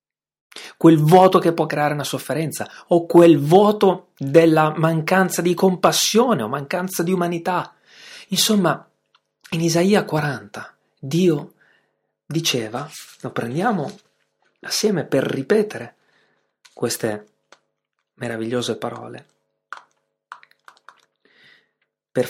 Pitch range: 140-190 Hz